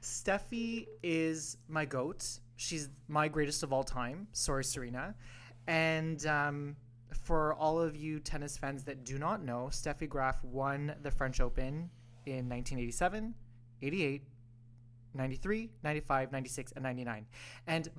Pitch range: 125-155 Hz